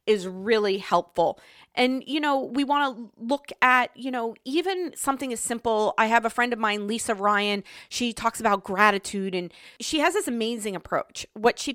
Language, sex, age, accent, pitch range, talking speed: English, female, 30-49, American, 215-280 Hz, 185 wpm